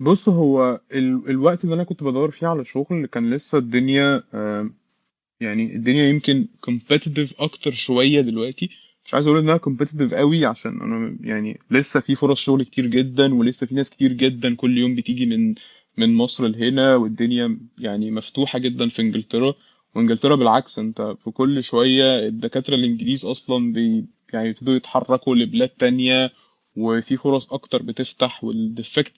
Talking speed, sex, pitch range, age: 150 wpm, male, 125-155 Hz, 20-39